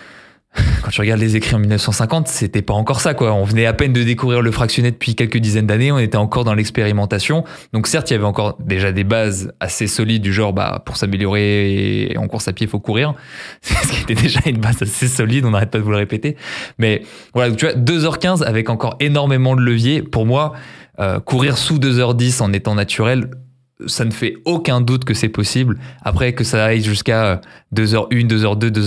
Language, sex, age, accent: French, male, 20-39, French